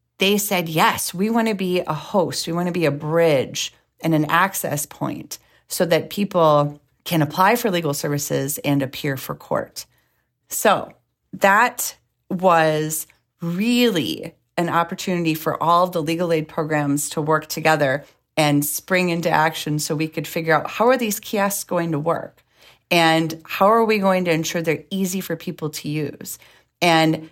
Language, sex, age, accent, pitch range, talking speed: English, female, 30-49, American, 155-190 Hz, 170 wpm